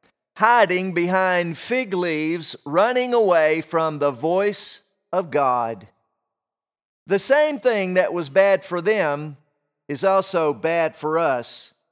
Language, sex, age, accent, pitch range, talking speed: English, male, 40-59, American, 155-195 Hz, 120 wpm